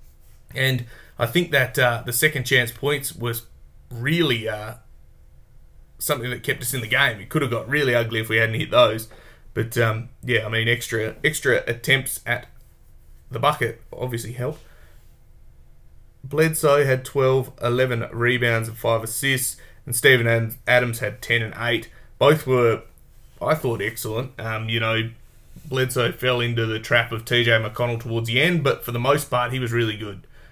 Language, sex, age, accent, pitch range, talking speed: English, male, 20-39, Australian, 115-130 Hz, 165 wpm